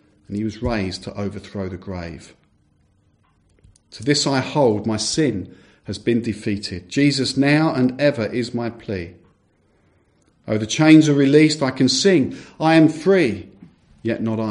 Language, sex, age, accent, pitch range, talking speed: English, male, 50-69, British, 95-130 Hz, 155 wpm